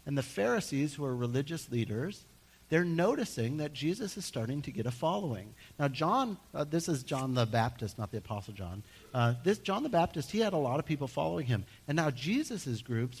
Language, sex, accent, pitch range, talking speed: English, male, American, 115-155 Hz, 210 wpm